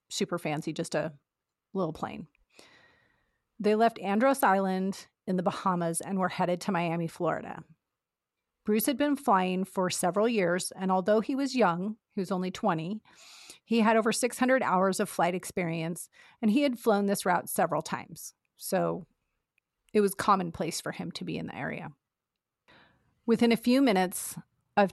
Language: English